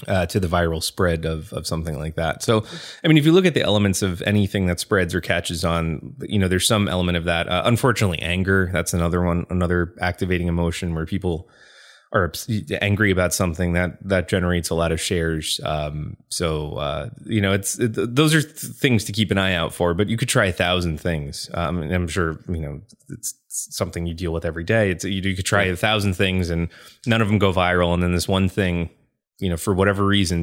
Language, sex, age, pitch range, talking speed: English, male, 20-39, 85-105 Hz, 230 wpm